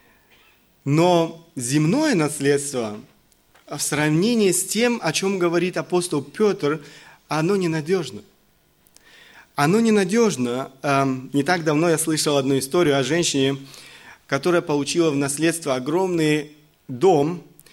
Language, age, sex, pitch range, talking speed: Russian, 30-49, male, 145-180 Hz, 105 wpm